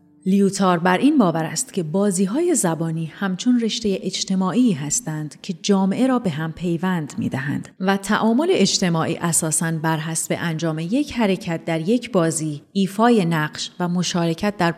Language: Persian